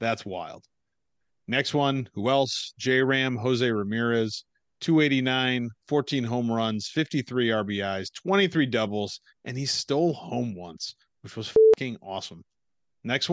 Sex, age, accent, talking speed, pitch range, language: male, 40-59, American, 120 wpm, 115-145 Hz, English